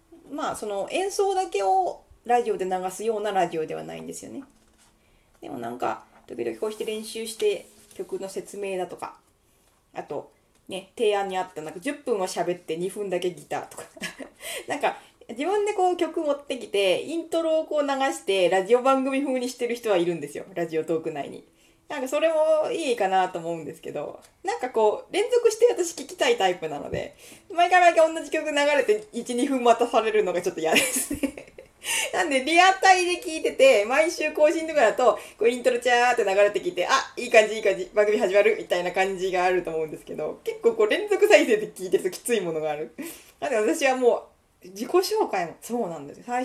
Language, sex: Japanese, female